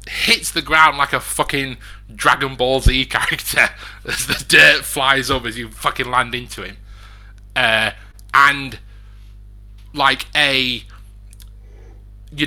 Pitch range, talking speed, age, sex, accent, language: 100-130 Hz, 125 wpm, 20-39, male, British, English